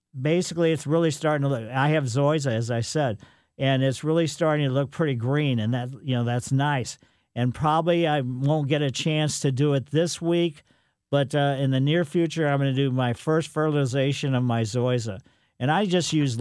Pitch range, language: 130-160 Hz, English